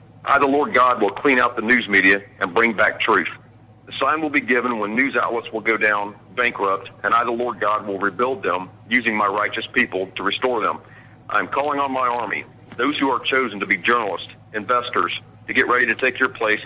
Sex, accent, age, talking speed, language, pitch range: male, American, 40-59, 225 wpm, English, 105-120 Hz